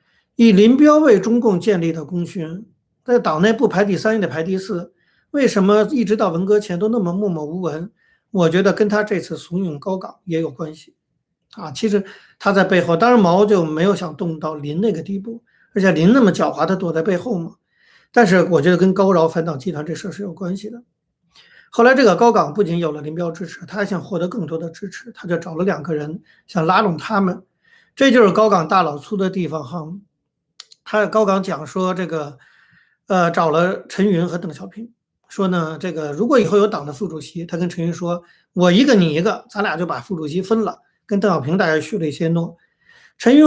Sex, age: male, 50-69